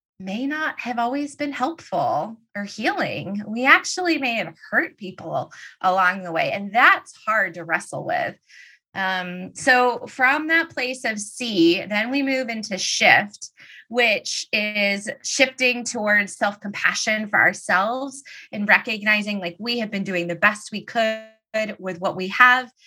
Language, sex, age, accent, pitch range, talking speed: English, female, 20-39, American, 190-245 Hz, 150 wpm